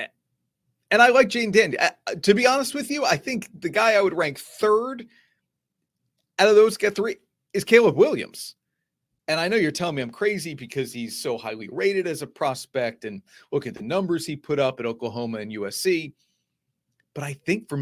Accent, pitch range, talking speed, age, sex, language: American, 125-190 Hz, 200 wpm, 40-59, male, English